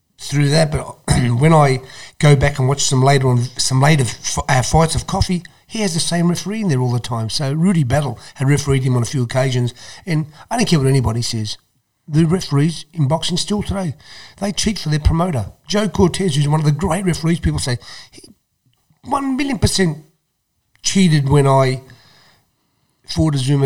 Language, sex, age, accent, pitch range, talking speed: English, male, 40-59, British, 135-185 Hz, 195 wpm